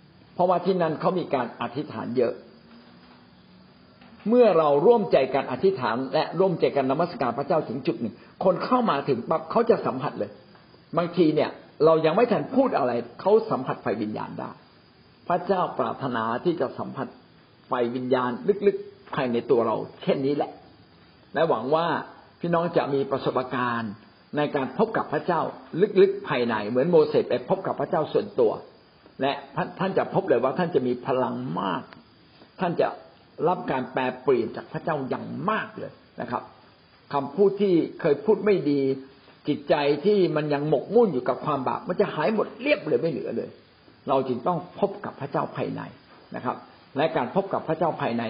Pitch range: 130-200 Hz